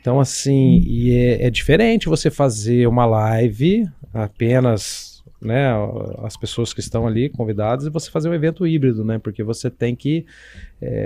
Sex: male